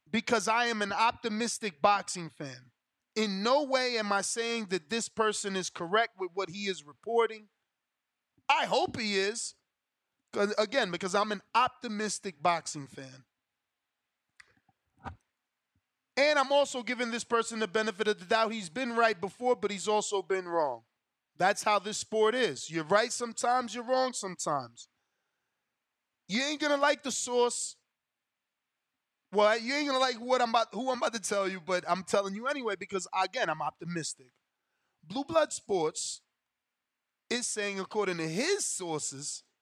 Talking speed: 160 wpm